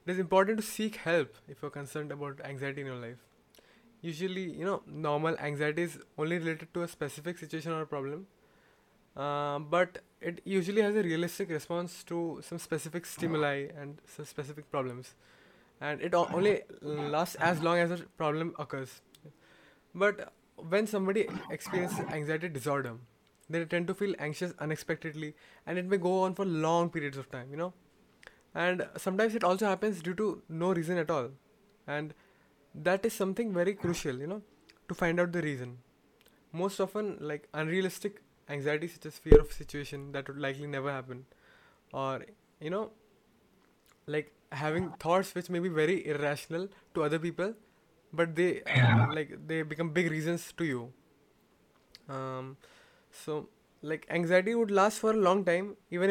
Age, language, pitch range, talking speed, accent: 20-39, English, 150-185 Hz, 165 wpm, Indian